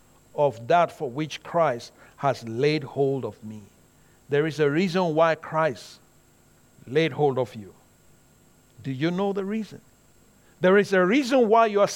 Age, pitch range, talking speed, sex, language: 50-69, 145-230 Hz, 160 wpm, male, English